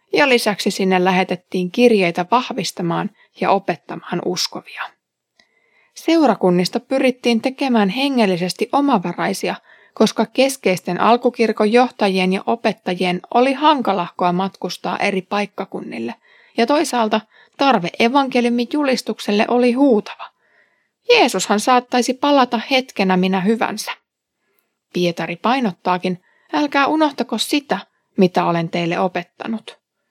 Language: Finnish